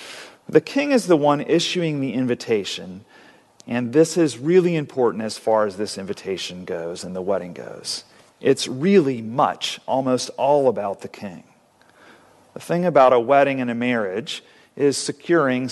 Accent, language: American, English